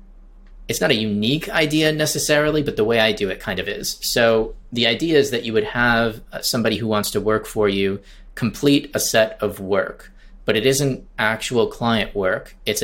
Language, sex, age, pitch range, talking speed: English, male, 30-49, 105-125 Hz, 195 wpm